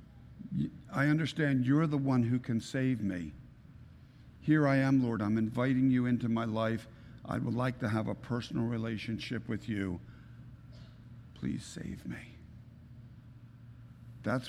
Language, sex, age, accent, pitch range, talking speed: English, male, 60-79, American, 120-155 Hz, 135 wpm